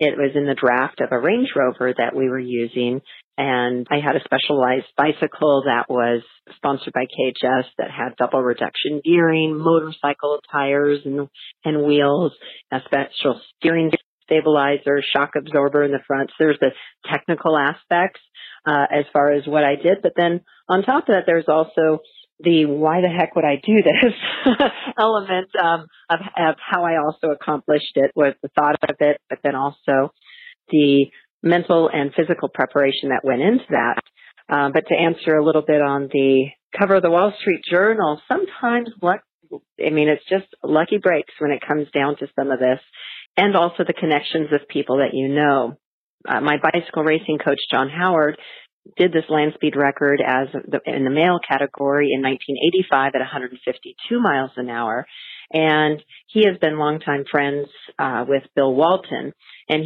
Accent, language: American, English